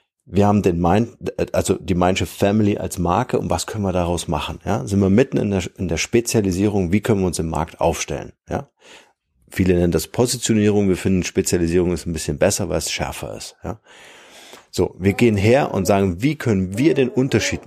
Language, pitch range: German, 90-115 Hz